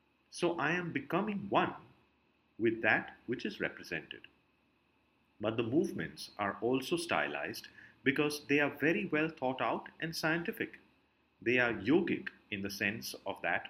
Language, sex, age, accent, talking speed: English, male, 50-69, Indian, 145 wpm